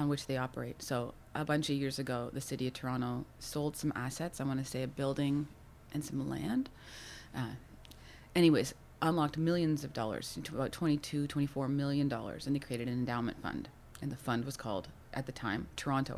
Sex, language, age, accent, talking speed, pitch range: female, English, 30-49, American, 195 wpm, 130-165 Hz